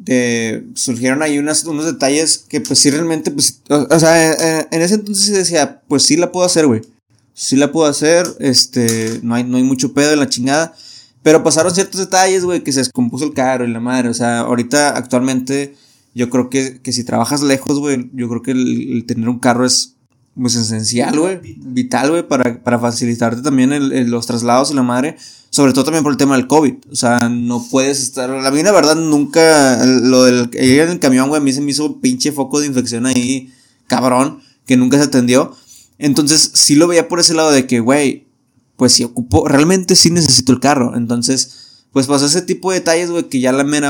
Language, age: Spanish, 20-39